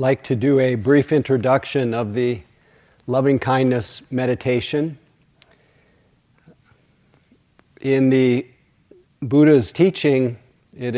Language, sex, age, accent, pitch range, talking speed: English, male, 40-59, American, 120-145 Hz, 85 wpm